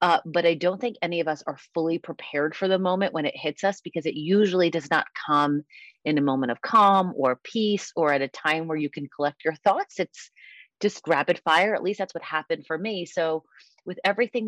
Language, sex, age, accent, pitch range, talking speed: English, female, 30-49, American, 155-205 Hz, 230 wpm